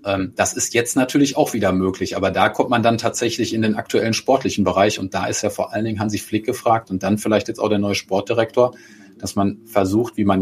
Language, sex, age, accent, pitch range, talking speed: German, male, 30-49, German, 100-115 Hz, 235 wpm